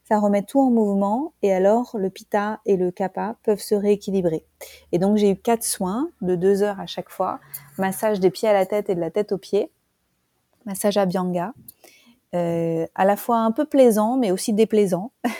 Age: 30-49